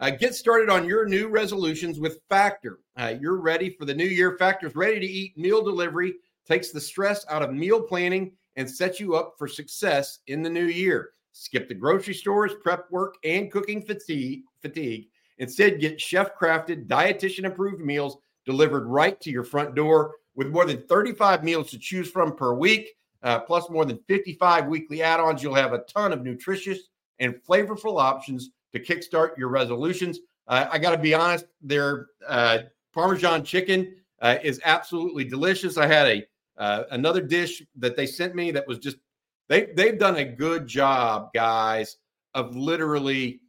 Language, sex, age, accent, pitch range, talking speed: English, male, 50-69, American, 135-185 Hz, 175 wpm